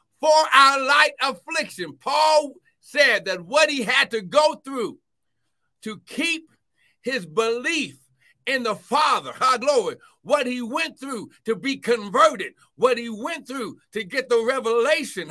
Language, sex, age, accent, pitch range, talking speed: English, male, 60-79, American, 200-280 Hz, 145 wpm